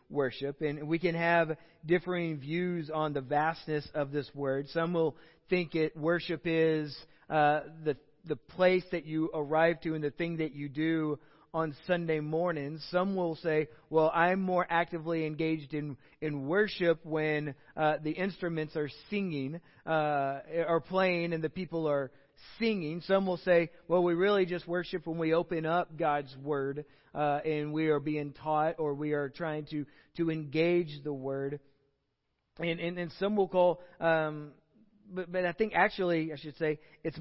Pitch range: 150-175 Hz